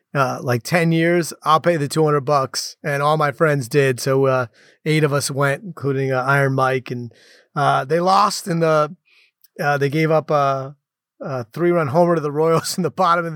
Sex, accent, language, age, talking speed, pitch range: male, American, English, 30-49, 205 wpm, 140-175 Hz